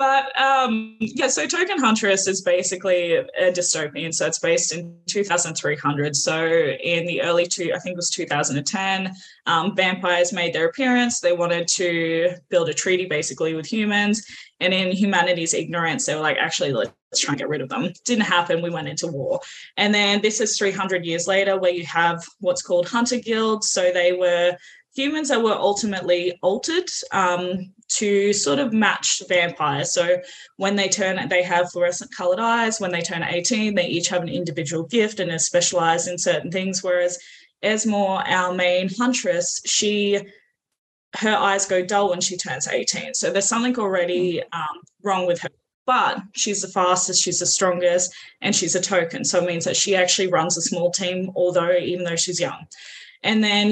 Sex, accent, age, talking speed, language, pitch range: female, Australian, 10-29, 180 wpm, English, 175-210 Hz